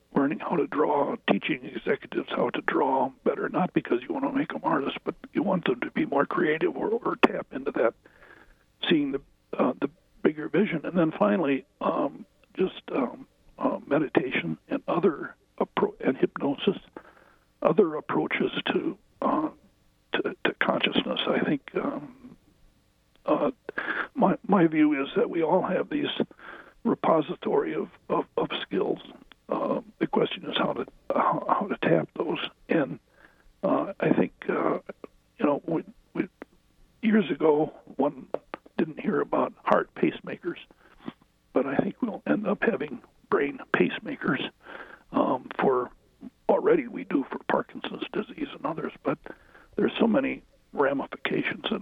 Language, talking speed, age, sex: English, 140 wpm, 60-79, male